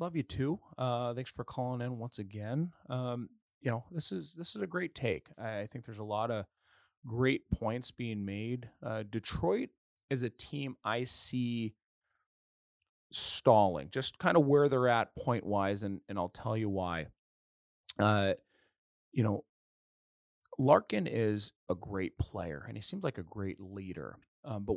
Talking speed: 165 wpm